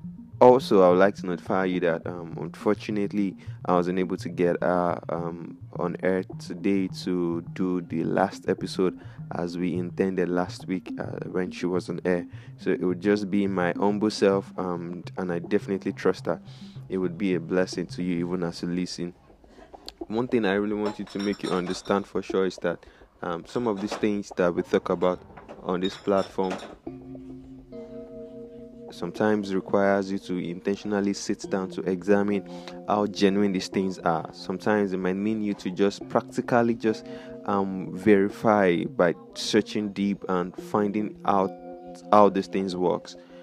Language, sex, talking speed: English, male, 170 wpm